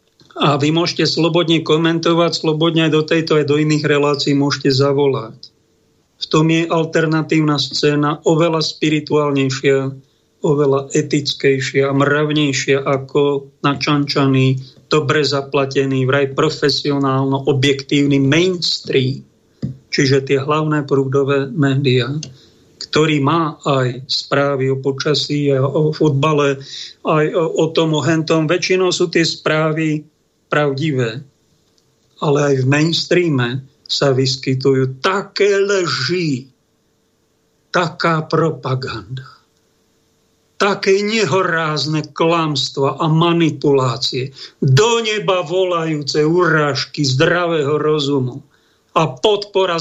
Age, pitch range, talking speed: 40-59, 140-170 Hz, 95 wpm